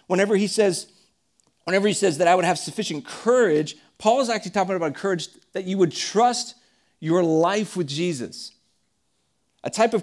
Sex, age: male, 40-59